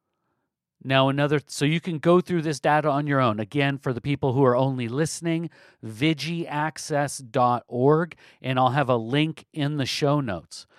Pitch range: 130-155 Hz